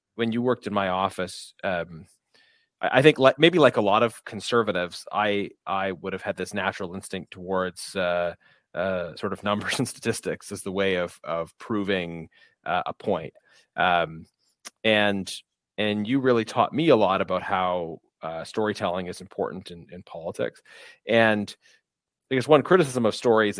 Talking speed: 170 wpm